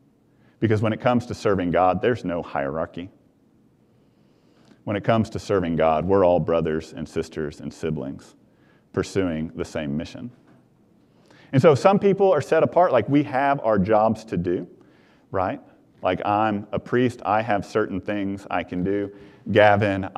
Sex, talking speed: male, 160 wpm